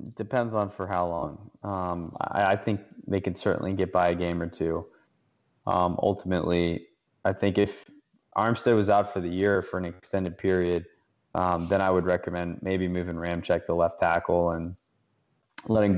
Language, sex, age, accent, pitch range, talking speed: English, male, 20-39, American, 90-105 Hz, 175 wpm